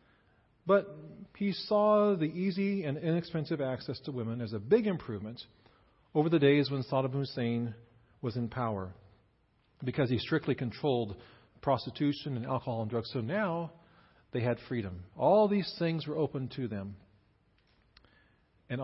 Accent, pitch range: American, 115-150 Hz